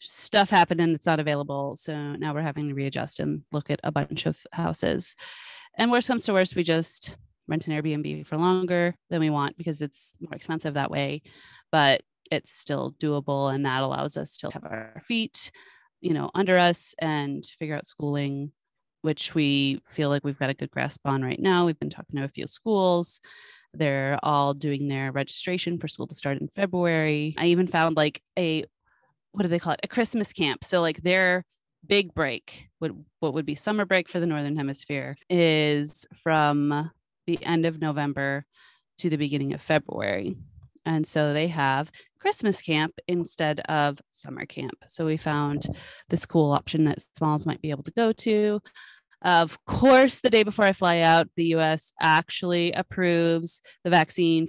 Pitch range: 145-175 Hz